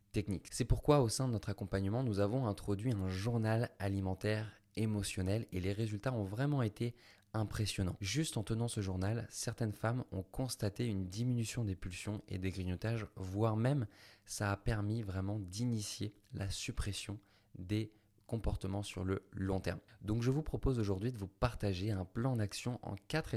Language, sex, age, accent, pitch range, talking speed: French, male, 20-39, French, 100-115 Hz, 170 wpm